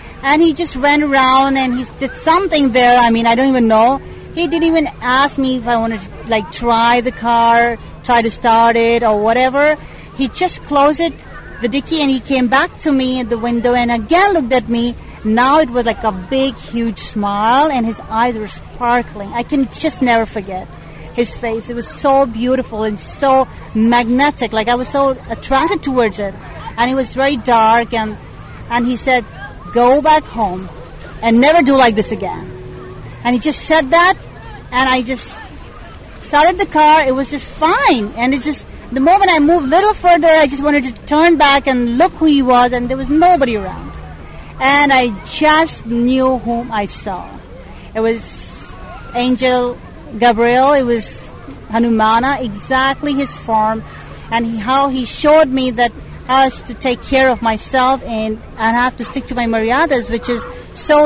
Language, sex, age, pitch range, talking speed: English, female, 40-59, 235-280 Hz, 185 wpm